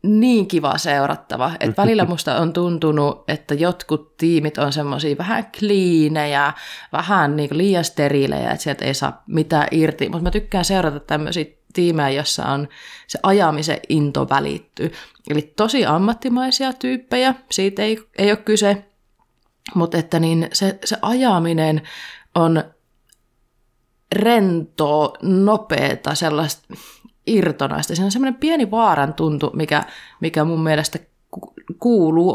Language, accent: Finnish, native